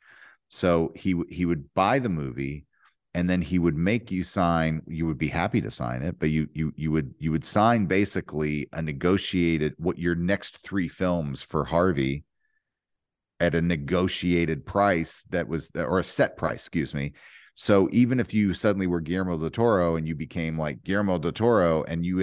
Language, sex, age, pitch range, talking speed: English, male, 40-59, 80-95 Hz, 190 wpm